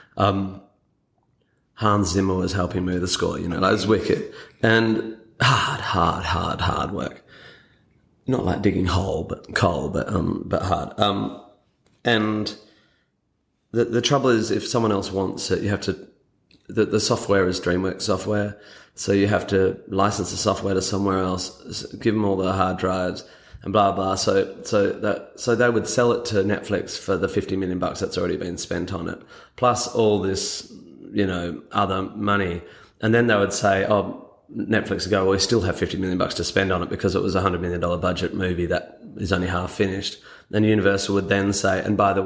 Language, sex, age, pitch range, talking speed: English, male, 30-49, 95-105 Hz, 195 wpm